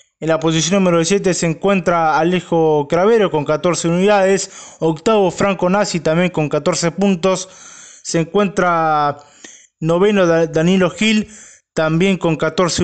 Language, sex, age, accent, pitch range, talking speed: Spanish, male, 20-39, Argentinian, 170-200 Hz, 125 wpm